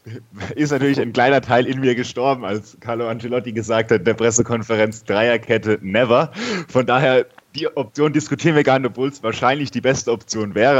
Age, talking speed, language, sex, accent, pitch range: 30-49, 185 wpm, German, male, German, 115-140 Hz